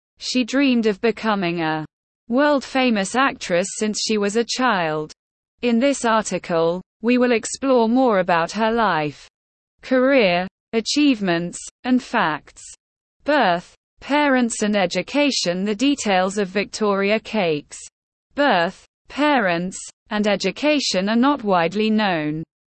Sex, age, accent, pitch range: female, 20-39, British, 180-250 Hz